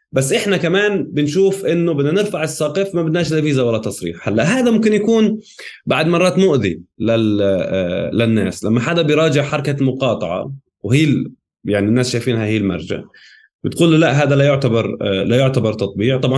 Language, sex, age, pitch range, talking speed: Arabic, male, 20-39, 110-145 Hz, 165 wpm